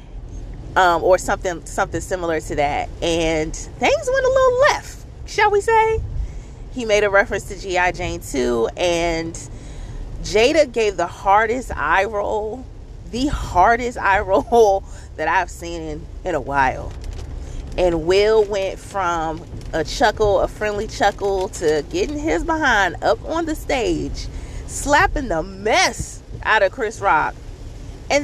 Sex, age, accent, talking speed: female, 30-49, American, 140 wpm